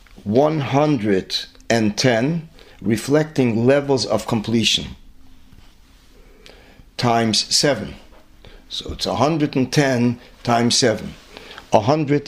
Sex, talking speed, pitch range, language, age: male, 100 wpm, 110-140 Hz, English, 50-69